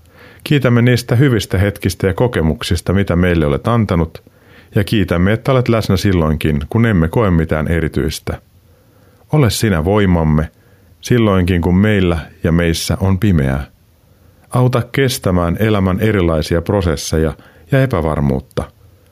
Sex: male